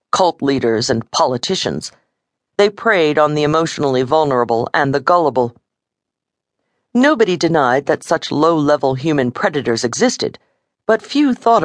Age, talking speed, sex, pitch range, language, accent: 50-69, 125 wpm, female, 130-170 Hz, English, American